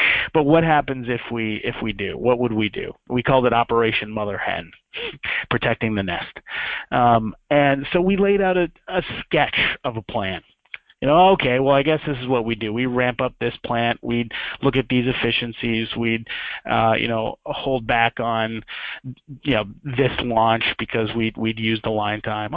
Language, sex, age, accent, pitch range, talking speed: English, male, 30-49, American, 115-140 Hz, 190 wpm